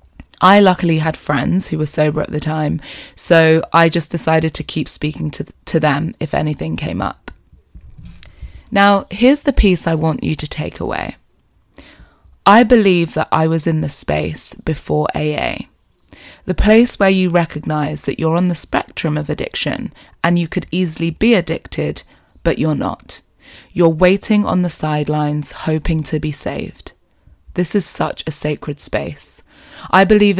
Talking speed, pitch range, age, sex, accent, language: 160 wpm, 150-180 Hz, 20-39, female, British, English